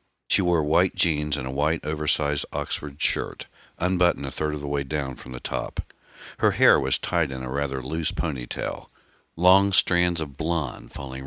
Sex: male